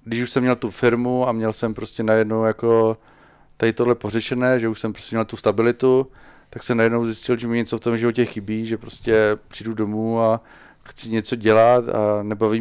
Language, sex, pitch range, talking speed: Slovak, male, 105-115 Hz, 205 wpm